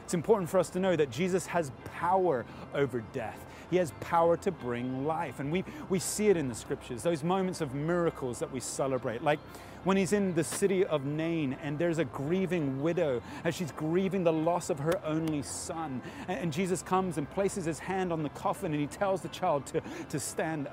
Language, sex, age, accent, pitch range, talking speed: English, male, 30-49, British, 145-185 Hz, 210 wpm